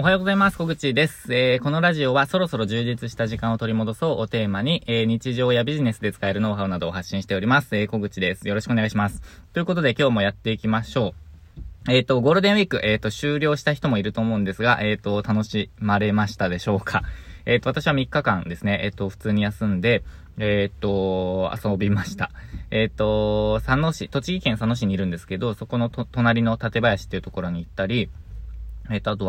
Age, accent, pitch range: 20-39, native, 95-120 Hz